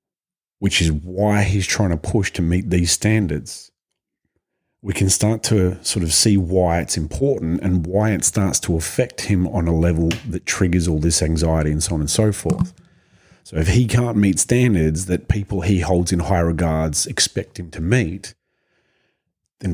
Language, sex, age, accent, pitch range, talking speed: English, male, 30-49, Australian, 80-100 Hz, 180 wpm